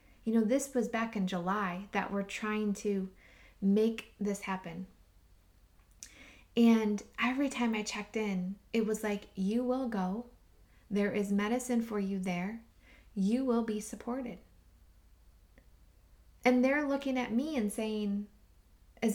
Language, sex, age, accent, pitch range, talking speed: English, female, 20-39, American, 190-240 Hz, 140 wpm